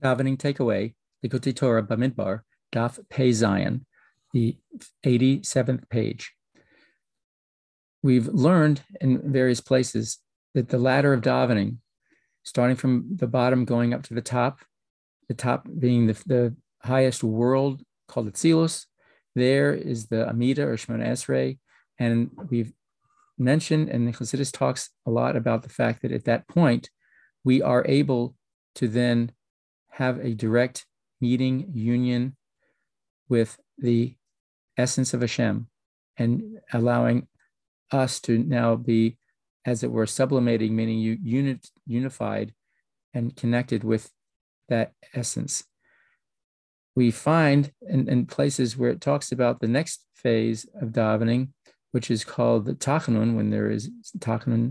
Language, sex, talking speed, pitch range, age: English, male, 130 wpm, 115-130 Hz, 40-59